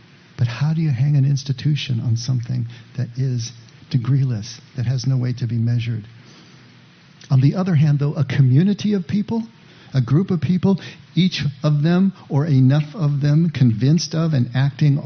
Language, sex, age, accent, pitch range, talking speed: English, male, 50-69, American, 130-155 Hz, 170 wpm